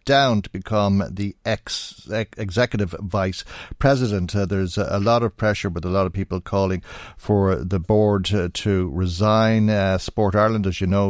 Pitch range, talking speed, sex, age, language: 95-110 Hz, 180 wpm, male, 60-79, English